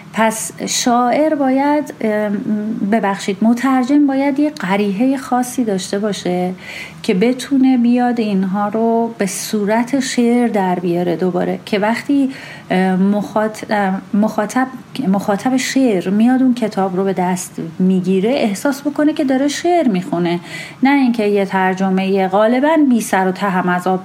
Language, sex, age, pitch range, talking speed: Persian, female, 30-49, 185-250 Hz, 125 wpm